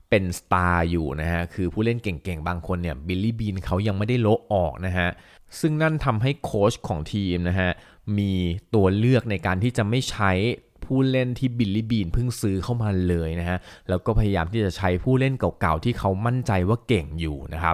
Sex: male